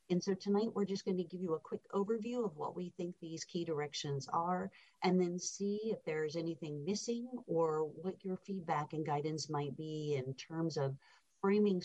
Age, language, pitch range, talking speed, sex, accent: 50-69, English, 150-185 Hz, 200 wpm, female, American